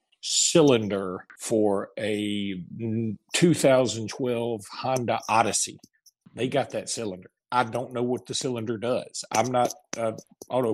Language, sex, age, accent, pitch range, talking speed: English, male, 40-59, American, 110-130 Hz, 115 wpm